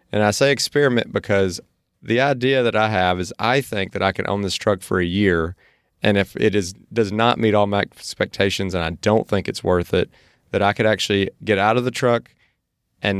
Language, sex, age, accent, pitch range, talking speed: English, male, 30-49, American, 95-115 Hz, 225 wpm